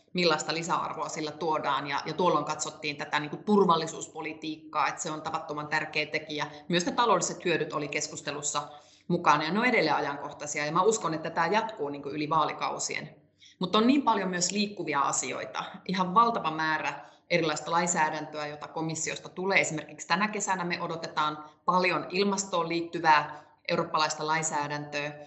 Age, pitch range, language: 30-49, 150-190 Hz, Finnish